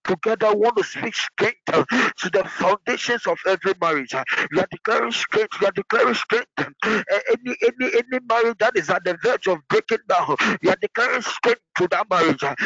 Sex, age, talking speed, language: male, 50-69, 185 wpm, English